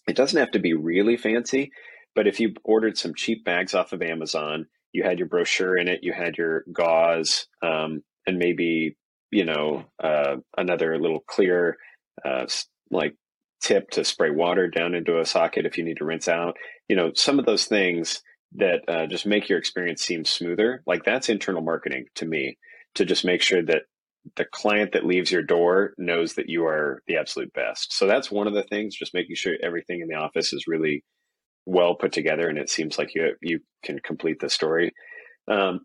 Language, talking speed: English, 200 wpm